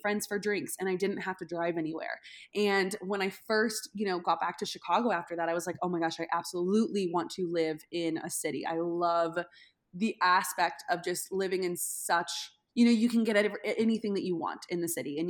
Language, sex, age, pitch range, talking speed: English, female, 20-39, 170-205 Hz, 230 wpm